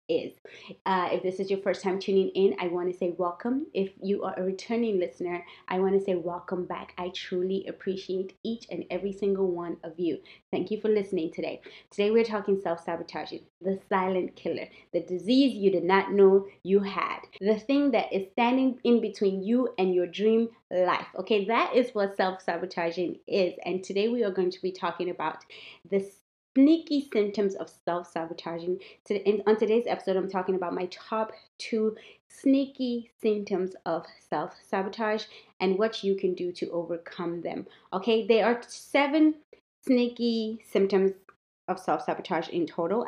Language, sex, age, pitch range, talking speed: English, female, 20-39, 185-225 Hz, 165 wpm